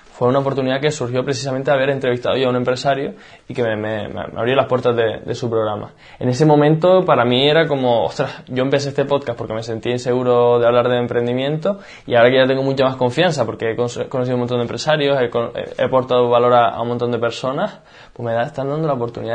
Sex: male